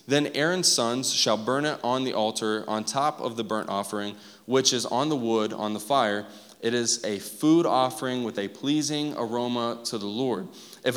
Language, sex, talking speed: English, male, 195 wpm